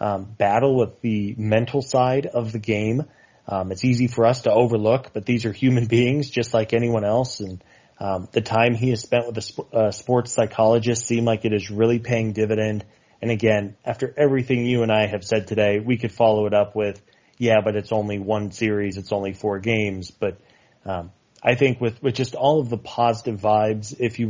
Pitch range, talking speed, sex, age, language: 105-125 Hz, 210 wpm, male, 30-49, English